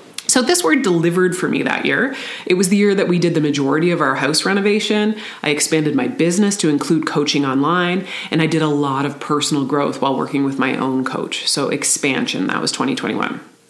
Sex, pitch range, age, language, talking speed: female, 145-180 Hz, 30-49, English, 210 wpm